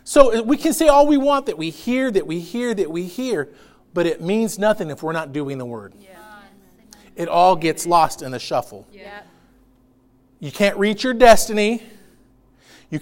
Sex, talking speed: male, 180 wpm